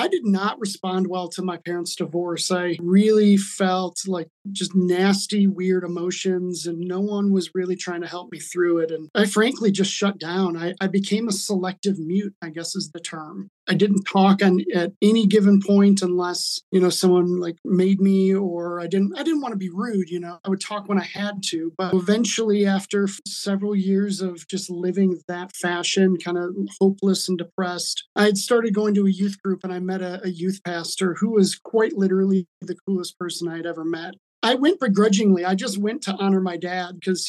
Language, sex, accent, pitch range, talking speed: English, male, American, 180-200 Hz, 205 wpm